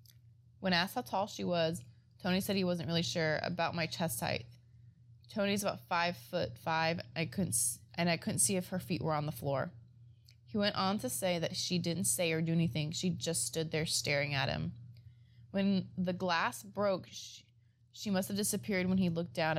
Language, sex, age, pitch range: English, female, 20-39, 120-180 Hz